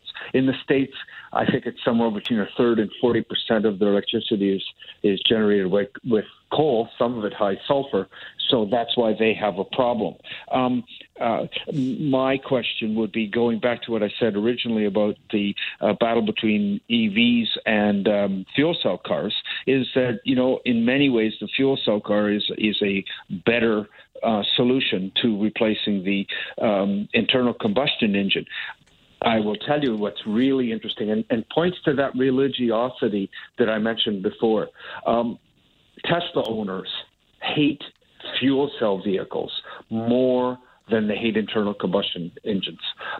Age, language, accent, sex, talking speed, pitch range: 50-69, English, American, male, 155 wpm, 105-130 Hz